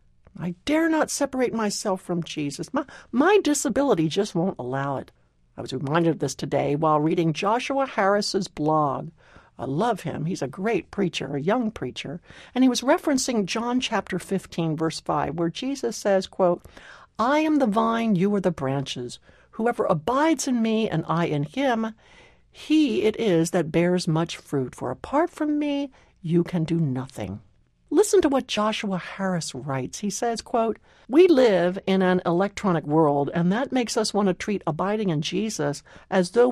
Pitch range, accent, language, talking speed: 160-230 Hz, American, English, 175 wpm